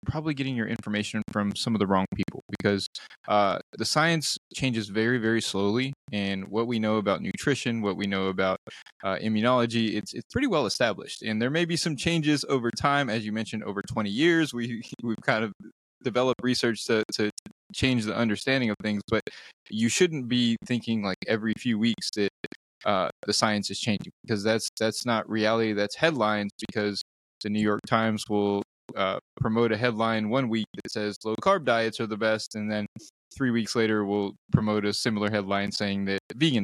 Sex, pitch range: male, 105-120 Hz